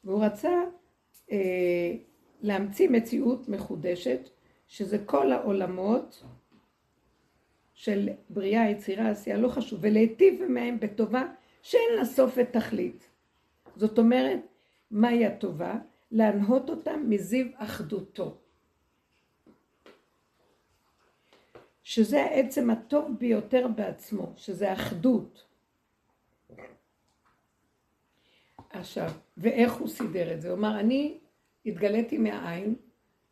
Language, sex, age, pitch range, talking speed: Hebrew, female, 60-79, 200-245 Hz, 85 wpm